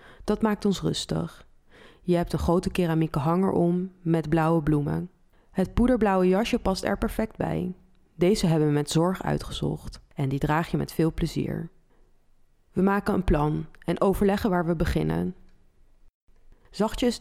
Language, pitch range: Dutch, 155-195 Hz